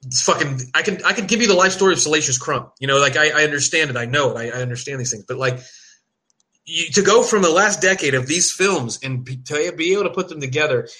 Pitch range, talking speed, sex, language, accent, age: 130-170 Hz, 260 wpm, male, English, American, 30-49